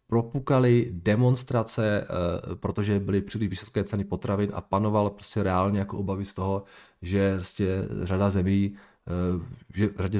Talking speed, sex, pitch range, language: 120 wpm, male, 100-130 Hz, Czech